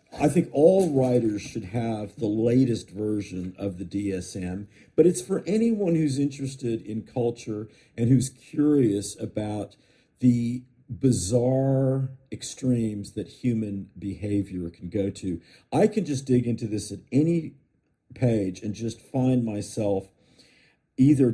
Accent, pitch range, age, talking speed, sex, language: American, 105-135 Hz, 50-69, 130 wpm, male, English